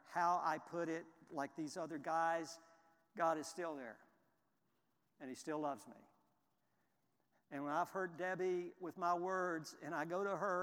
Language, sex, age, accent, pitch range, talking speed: English, male, 60-79, American, 165-195 Hz, 170 wpm